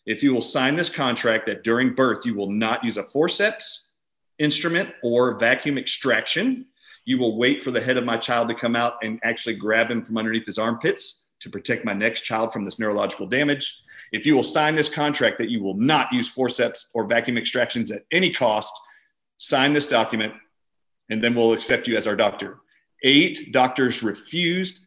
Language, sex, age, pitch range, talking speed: English, male, 40-59, 115-145 Hz, 195 wpm